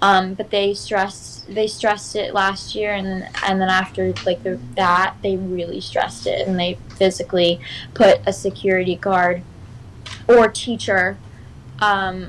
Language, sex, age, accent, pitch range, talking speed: English, female, 10-29, American, 185-230 Hz, 145 wpm